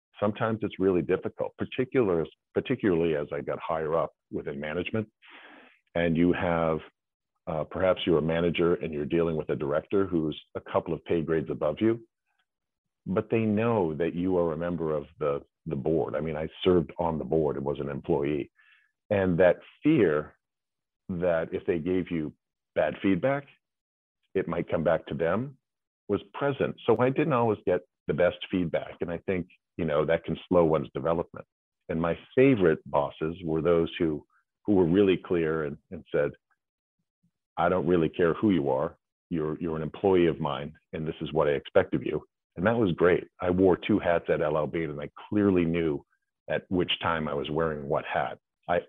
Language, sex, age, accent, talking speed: English, male, 50-69, American, 185 wpm